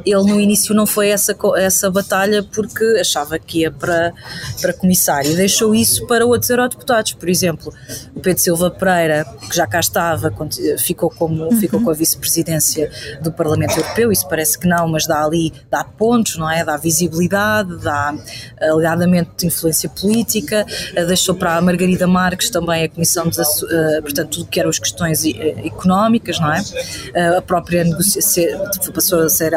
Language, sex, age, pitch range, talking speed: Portuguese, female, 20-39, 165-205 Hz, 165 wpm